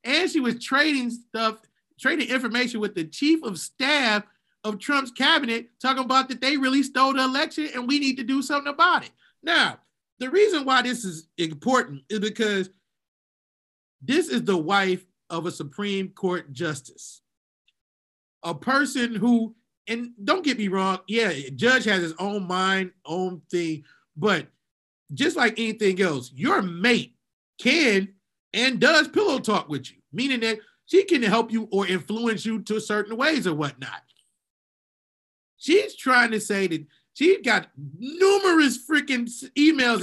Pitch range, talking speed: 195-275 Hz, 155 wpm